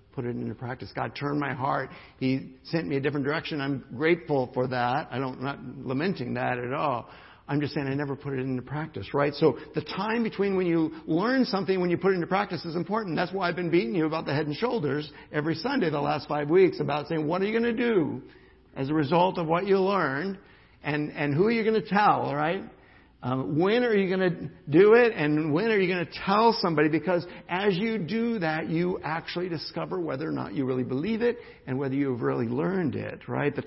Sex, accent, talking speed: male, American, 230 wpm